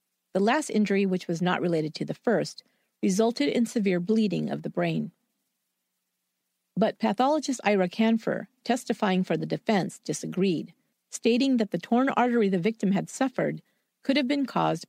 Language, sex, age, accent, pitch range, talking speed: English, female, 50-69, American, 175-230 Hz, 155 wpm